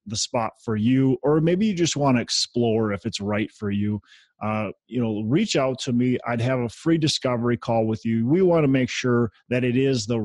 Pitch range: 105-130 Hz